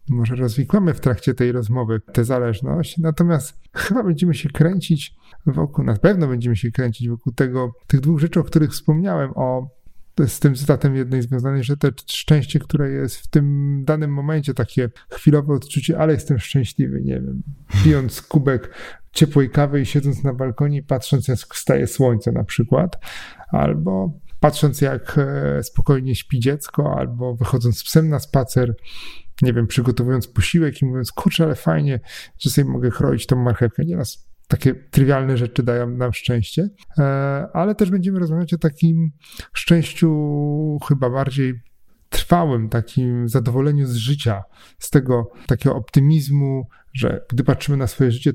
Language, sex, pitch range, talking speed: Polish, male, 125-150 Hz, 150 wpm